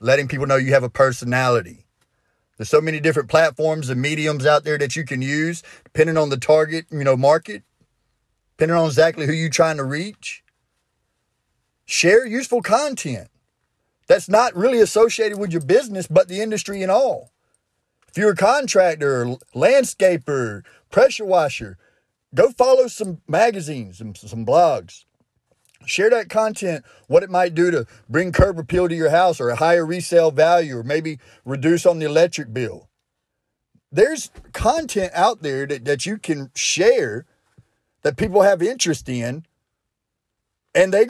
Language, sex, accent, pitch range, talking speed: English, male, American, 130-195 Hz, 155 wpm